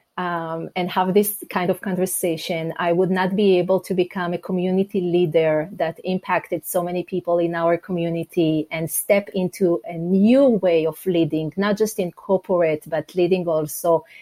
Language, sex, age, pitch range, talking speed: English, female, 30-49, 170-200 Hz, 170 wpm